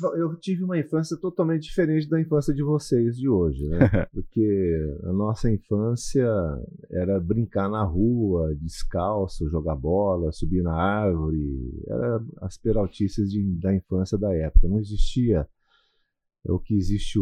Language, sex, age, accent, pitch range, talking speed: Portuguese, male, 40-59, Brazilian, 85-110 Hz, 145 wpm